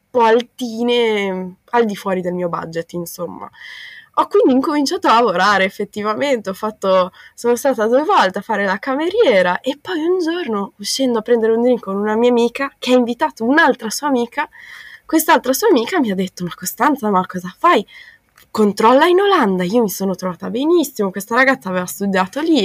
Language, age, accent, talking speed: Italian, 20-39, native, 180 wpm